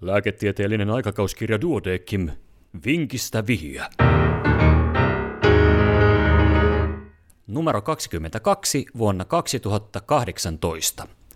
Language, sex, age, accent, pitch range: Finnish, male, 30-49, native, 90-120 Hz